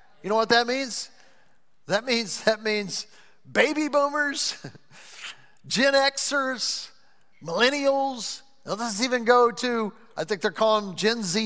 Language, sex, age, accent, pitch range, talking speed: English, male, 50-69, American, 195-270 Hz, 135 wpm